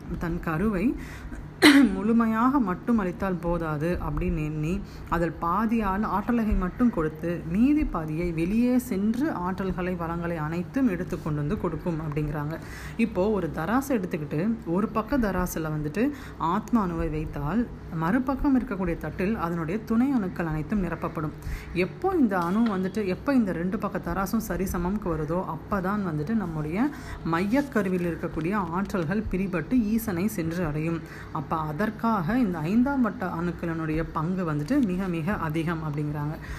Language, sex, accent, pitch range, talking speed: Tamil, female, native, 165-220 Hz, 125 wpm